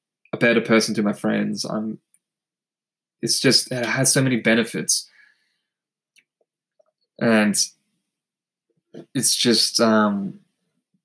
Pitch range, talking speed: 110-120 Hz, 100 wpm